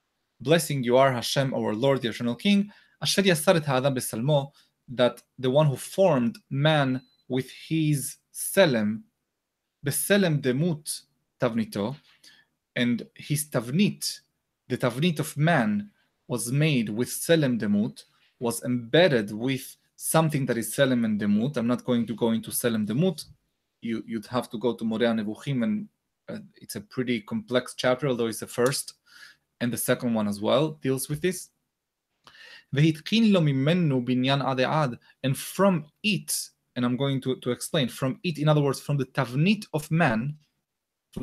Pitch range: 125-160 Hz